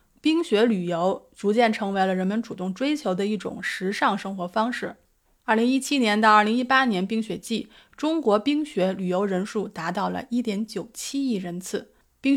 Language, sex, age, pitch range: Chinese, female, 30-49, 190-245 Hz